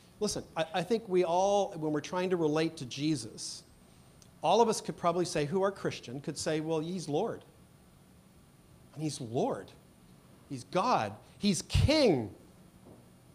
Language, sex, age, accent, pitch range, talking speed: English, male, 50-69, American, 140-195 Hz, 155 wpm